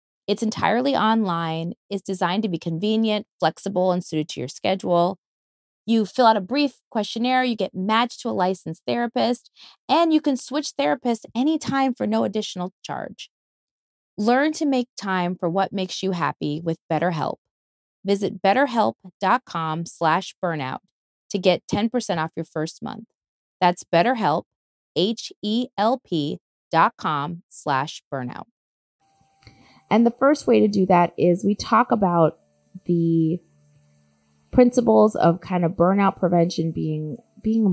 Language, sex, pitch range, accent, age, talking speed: English, female, 165-220 Hz, American, 30-49, 135 wpm